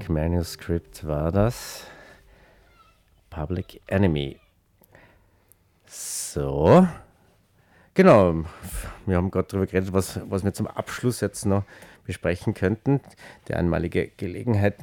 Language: German